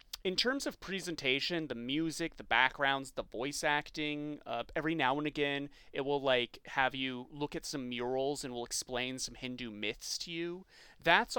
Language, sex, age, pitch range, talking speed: English, male, 30-49, 125-155 Hz, 180 wpm